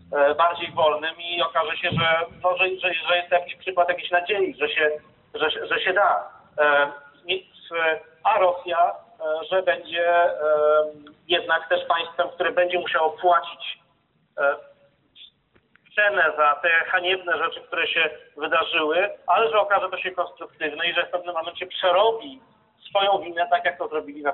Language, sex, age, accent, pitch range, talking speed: Polish, male, 40-59, native, 155-185 Hz, 155 wpm